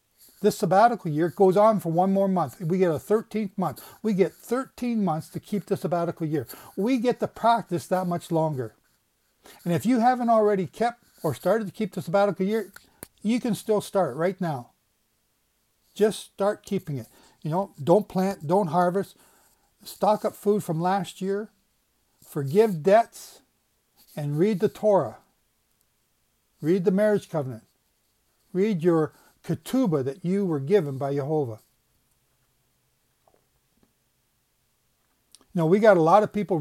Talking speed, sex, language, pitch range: 150 wpm, male, English, 155-205 Hz